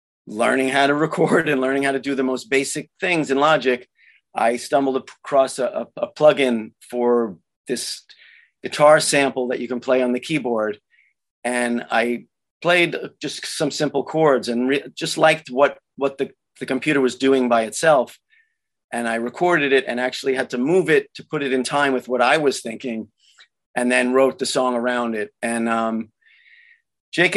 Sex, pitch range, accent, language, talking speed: male, 120-150 Hz, American, English, 180 wpm